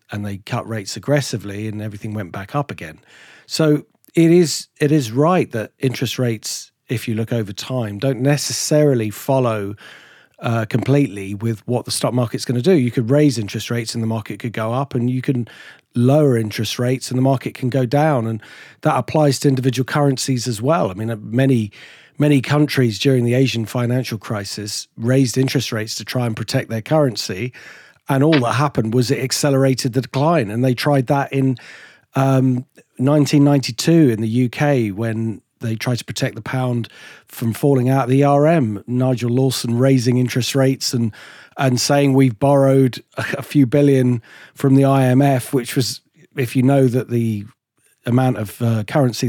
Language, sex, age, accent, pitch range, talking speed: English, male, 40-59, British, 115-135 Hz, 180 wpm